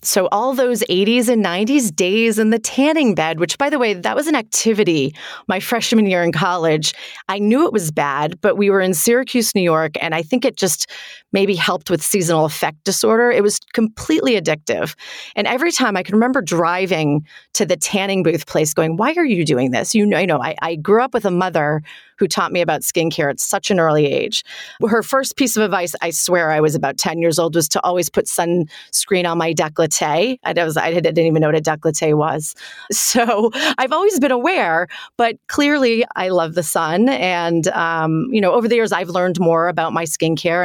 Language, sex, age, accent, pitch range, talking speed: English, female, 30-49, American, 165-230 Hz, 215 wpm